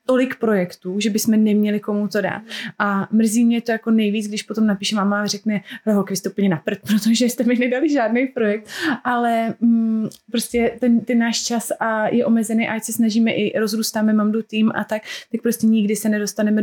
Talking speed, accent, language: 205 wpm, native, Czech